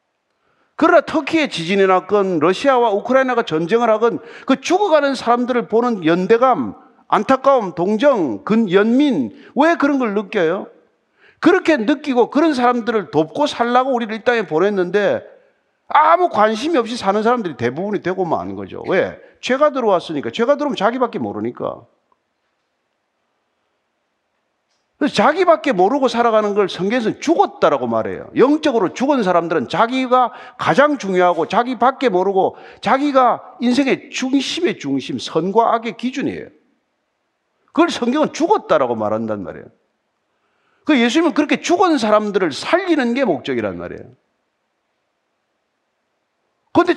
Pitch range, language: 205-290 Hz, Korean